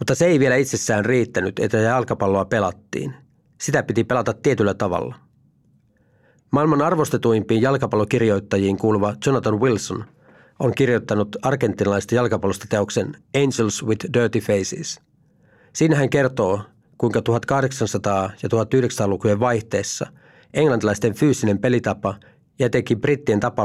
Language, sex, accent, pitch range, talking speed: Finnish, male, native, 100-130 Hz, 110 wpm